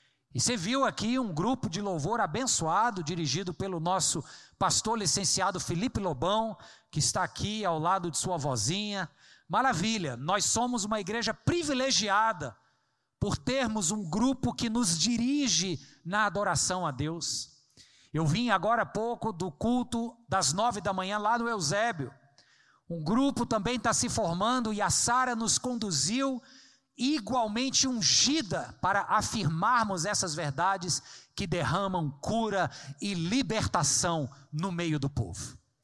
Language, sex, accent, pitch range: Portuguese, male, Brazilian, 165-240 Hz